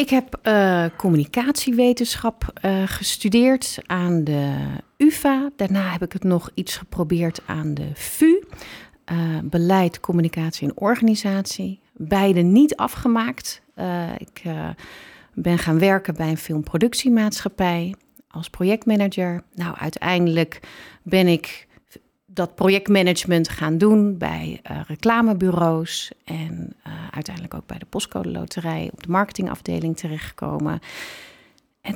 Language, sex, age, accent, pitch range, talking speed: Dutch, female, 40-59, Dutch, 165-205 Hz, 115 wpm